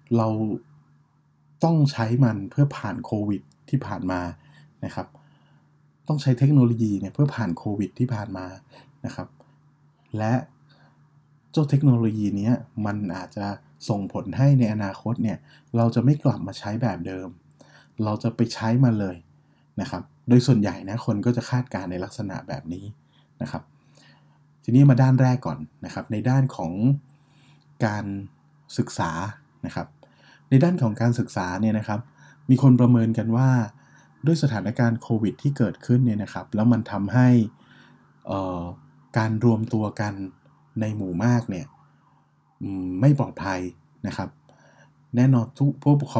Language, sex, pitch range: Thai, male, 100-135 Hz